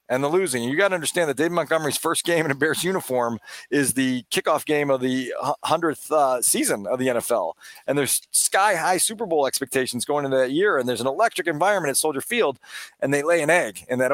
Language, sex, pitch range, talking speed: English, male, 130-165 Hz, 230 wpm